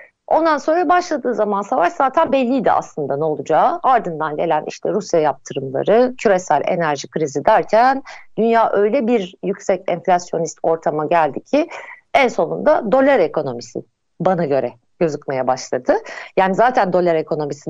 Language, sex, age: Turkish, female, 60-79